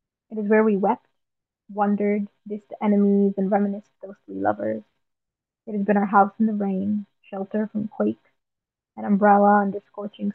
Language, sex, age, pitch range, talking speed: English, female, 20-39, 200-215 Hz, 155 wpm